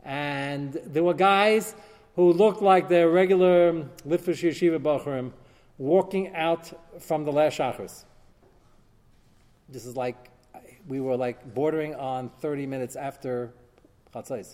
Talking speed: 125 wpm